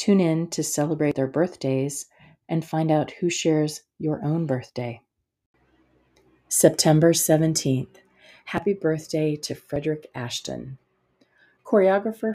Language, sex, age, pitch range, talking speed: English, female, 40-59, 135-165 Hz, 105 wpm